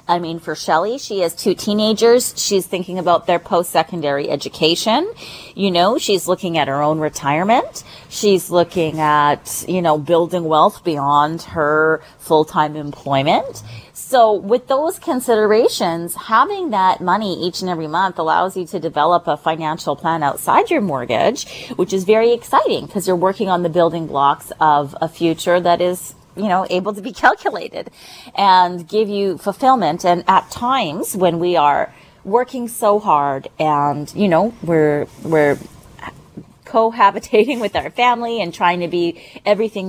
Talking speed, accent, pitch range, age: 155 wpm, American, 160-210 Hz, 30-49